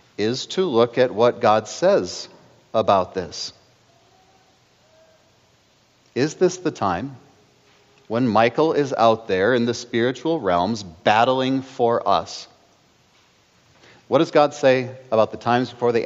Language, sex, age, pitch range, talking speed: English, male, 40-59, 115-155 Hz, 125 wpm